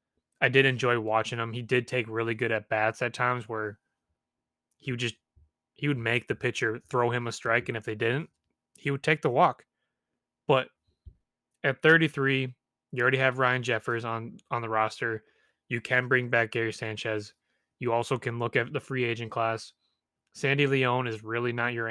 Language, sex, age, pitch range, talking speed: English, male, 20-39, 110-125 Hz, 190 wpm